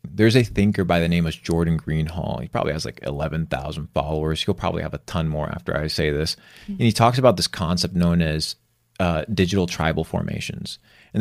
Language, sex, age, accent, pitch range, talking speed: English, male, 30-49, American, 85-105 Hz, 210 wpm